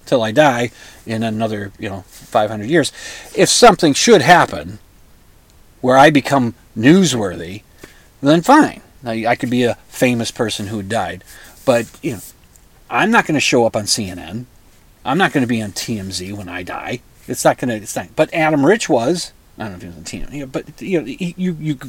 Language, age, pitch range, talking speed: English, 40-59, 110-155 Hz, 190 wpm